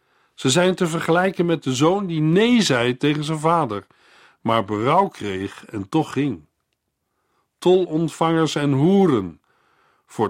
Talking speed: 140 wpm